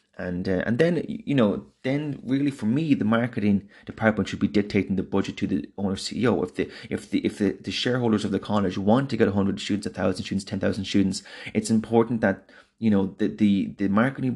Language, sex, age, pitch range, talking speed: English, male, 30-49, 95-105 Hz, 220 wpm